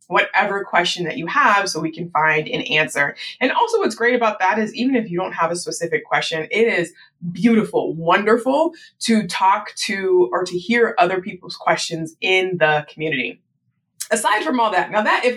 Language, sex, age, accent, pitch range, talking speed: English, female, 20-39, American, 175-230 Hz, 190 wpm